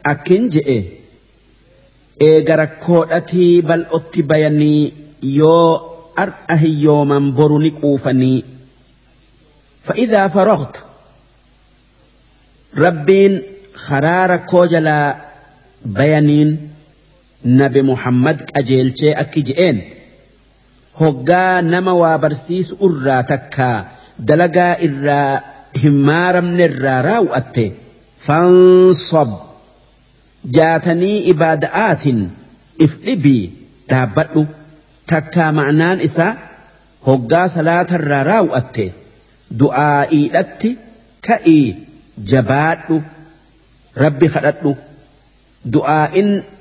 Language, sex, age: English, male, 50-69